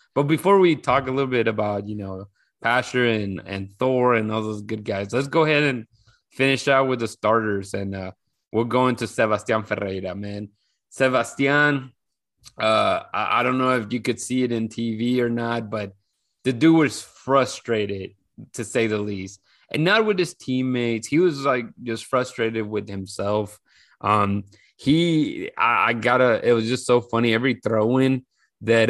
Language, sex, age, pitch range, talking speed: English, male, 20-39, 105-130 Hz, 180 wpm